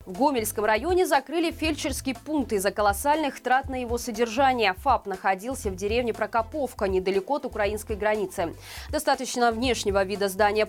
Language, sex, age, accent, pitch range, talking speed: Russian, female, 20-39, native, 210-285 Hz, 140 wpm